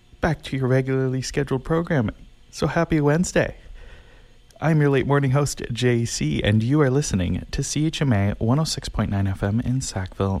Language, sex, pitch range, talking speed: English, male, 105-145 Hz, 145 wpm